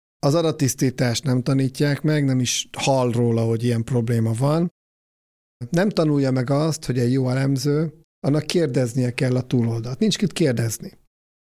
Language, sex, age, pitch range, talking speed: Hungarian, male, 50-69, 125-150 Hz, 155 wpm